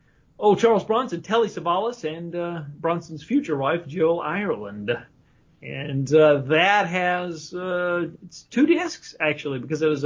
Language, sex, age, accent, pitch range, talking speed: English, male, 40-59, American, 145-180 Hz, 145 wpm